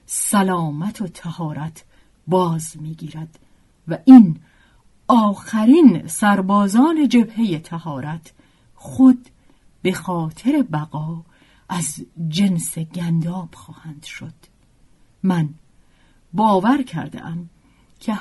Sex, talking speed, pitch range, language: female, 80 wpm, 160-225 Hz, Persian